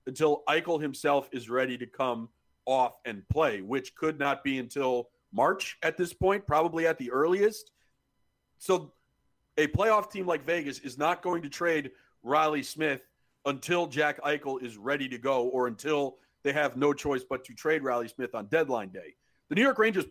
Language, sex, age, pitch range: English, male, 40-59, 130-170 Hz